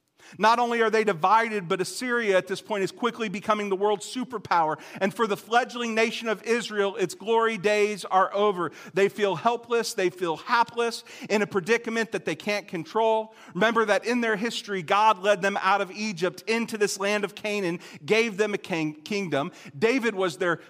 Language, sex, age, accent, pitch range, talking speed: English, male, 40-59, American, 170-215 Hz, 185 wpm